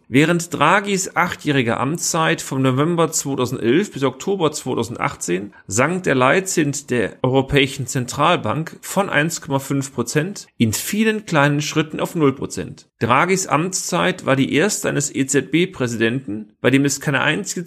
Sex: male